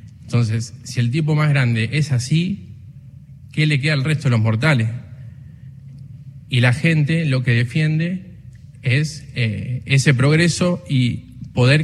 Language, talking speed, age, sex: Spanish, 140 wpm, 20-39, male